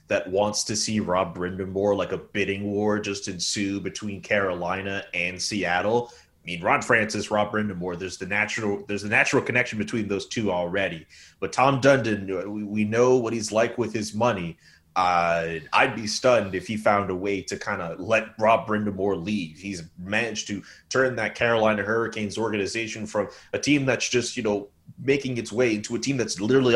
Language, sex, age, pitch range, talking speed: English, male, 30-49, 100-115 Hz, 190 wpm